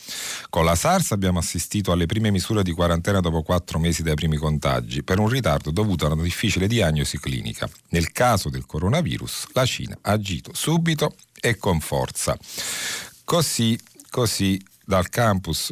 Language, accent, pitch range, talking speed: Italian, native, 75-95 Hz, 155 wpm